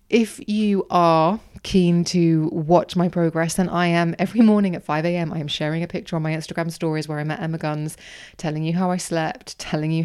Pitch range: 160-185 Hz